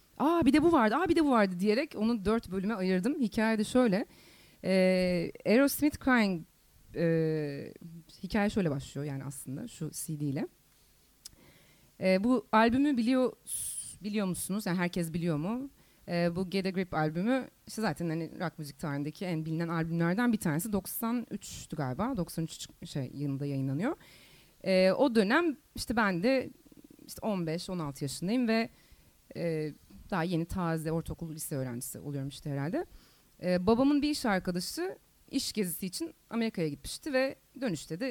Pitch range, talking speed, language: 165-240 Hz, 145 wpm, Turkish